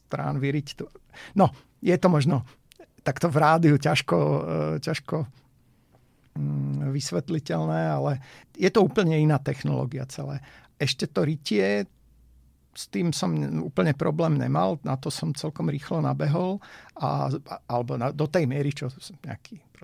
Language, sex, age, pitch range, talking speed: Slovak, male, 50-69, 130-155 Hz, 130 wpm